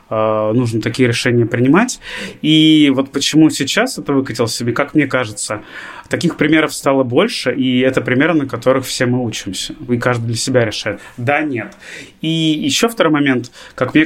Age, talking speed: 30-49, 165 wpm